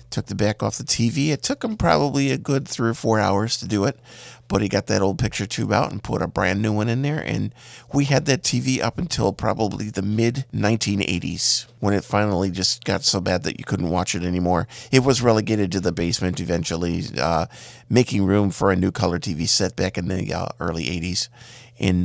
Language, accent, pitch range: English, American, 95-120 Hz